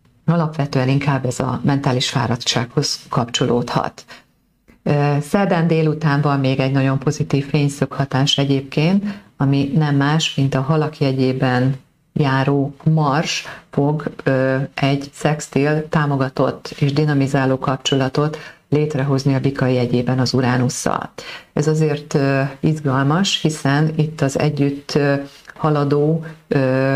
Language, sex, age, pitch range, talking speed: Hungarian, female, 40-59, 130-150 Hz, 105 wpm